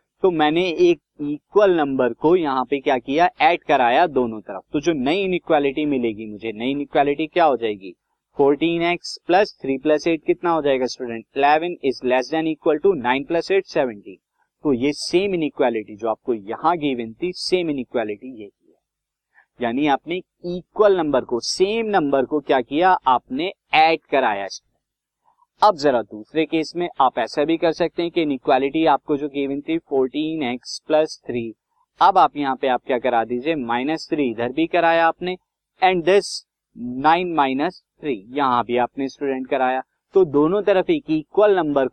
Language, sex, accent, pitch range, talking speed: Hindi, male, native, 130-175 Hz, 160 wpm